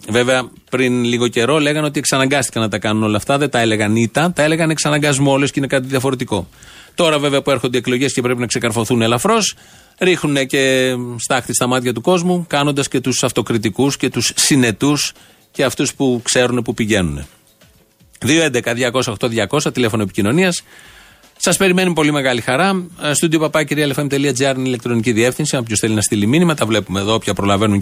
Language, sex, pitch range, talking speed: Greek, male, 115-155 Hz, 170 wpm